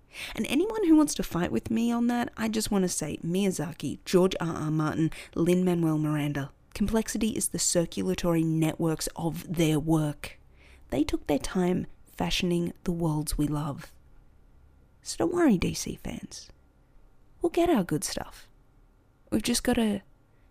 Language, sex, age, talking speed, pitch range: English, female, 30-49, 150 wpm, 155-225 Hz